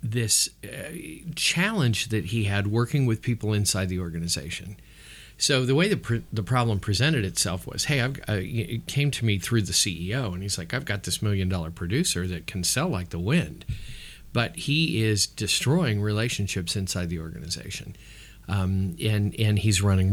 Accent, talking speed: American, 175 wpm